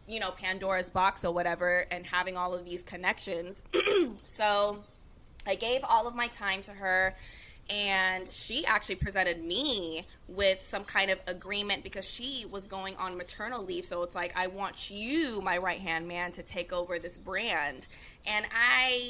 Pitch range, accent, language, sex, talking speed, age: 180-225 Hz, American, English, female, 175 wpm, 20-39